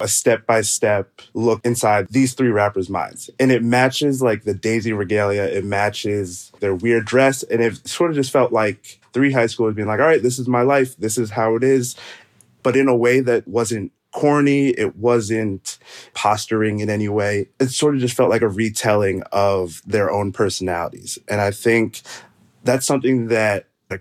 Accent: American